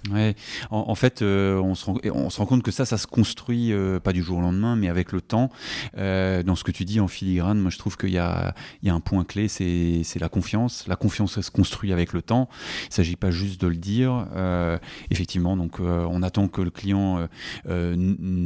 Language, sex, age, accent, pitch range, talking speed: French, male, 30-49, French, 90-115 Hz, 255 wpm